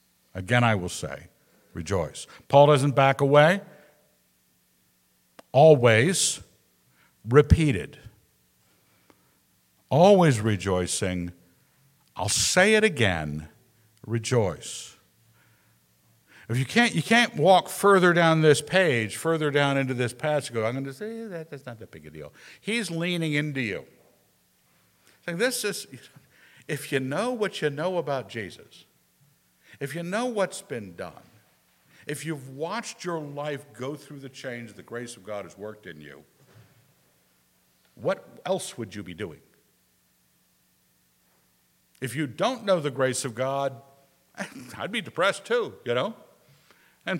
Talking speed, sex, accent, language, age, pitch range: 130 wpm, male, American, English, 60-79, 100-165 Hz